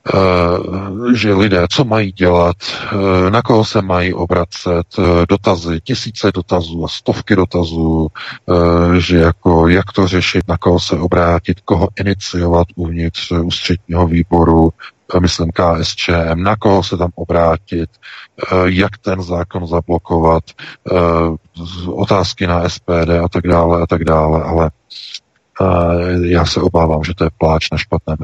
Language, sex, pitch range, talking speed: Czech, male, 85-95 Hz, 130 wpm